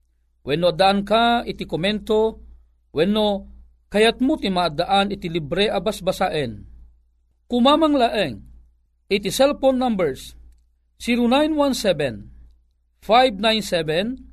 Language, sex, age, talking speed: Filipino, male, 50-69, 85 wpm